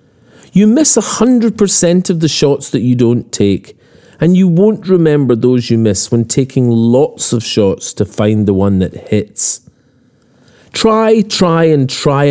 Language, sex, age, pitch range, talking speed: English, male, 40-59, 115-155 Hz, 155 wpm